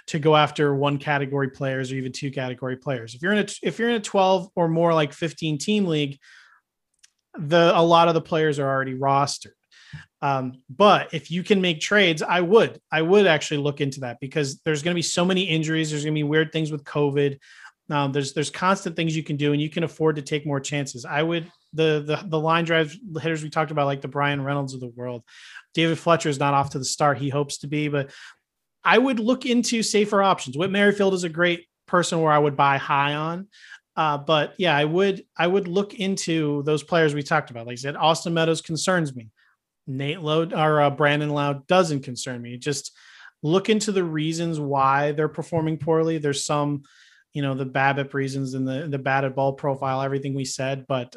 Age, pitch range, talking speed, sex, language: 30-49, 140-170 Hz, 220 wpm, male, English